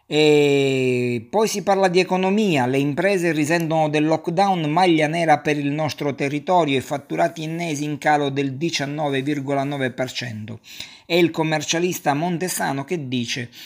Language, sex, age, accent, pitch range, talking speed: Italian, male, 50-69, native, 135-165 Hz, 130 wpm